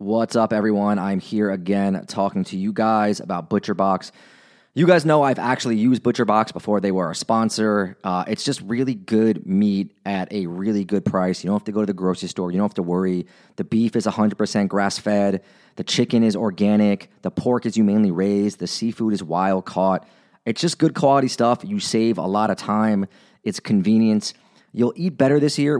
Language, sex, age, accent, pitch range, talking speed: English, male, 30-49, American, 100-125 Hz, 200 wpm